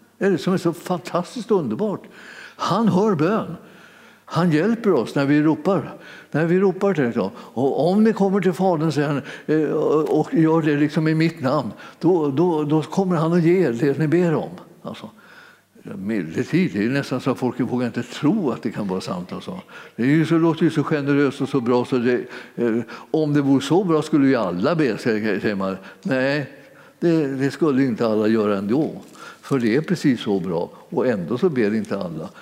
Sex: male